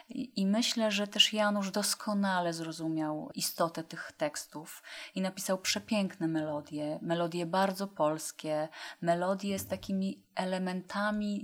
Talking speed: 110 wpm